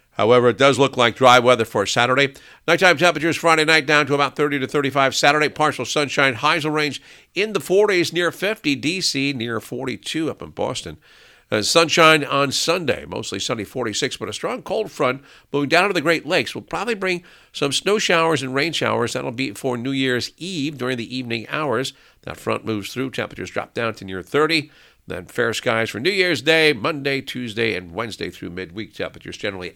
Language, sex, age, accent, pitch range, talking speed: English, male, 50-69, American, 125-165 Hz, 200 wpm